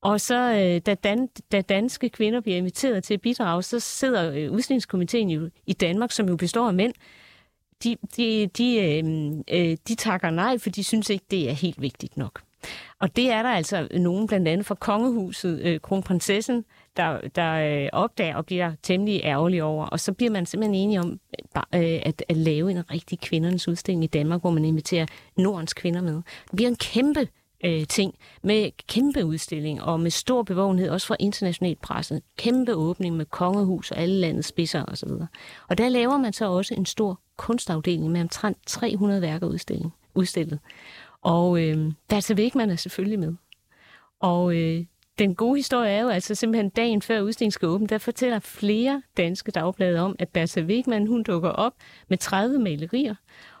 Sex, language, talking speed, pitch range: female, Danish, 170 wpm, 170-220 Hz